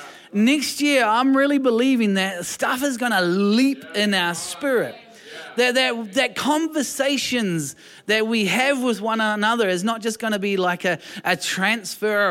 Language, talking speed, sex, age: English, 165 wpm, male, 30-49